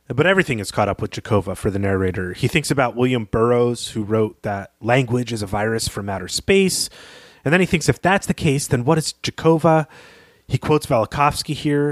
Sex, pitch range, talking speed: male, 105-135 Hz, 205 wpm